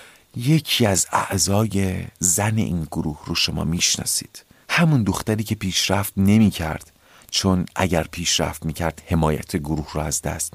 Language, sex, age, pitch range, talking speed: Persian, male, 40-59, 85-130 Hz, 130 wpm